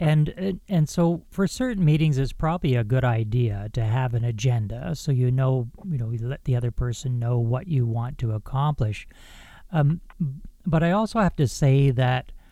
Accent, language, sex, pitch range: American, English, male, 125-160 Hz